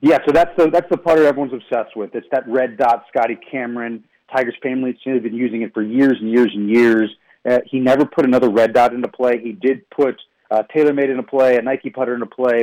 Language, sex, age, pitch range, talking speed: English, male, 30-49, 115-140 Hz, 240 wpm